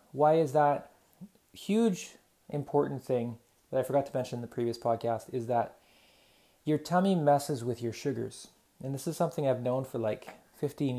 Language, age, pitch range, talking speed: English, 30-49, 120-140 Hz, 175 wpm